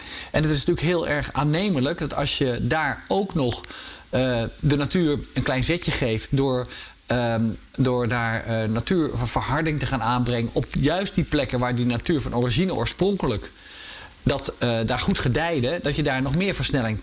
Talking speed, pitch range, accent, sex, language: 175 wpm, 115-150 Hz, Dutch, male, Dutch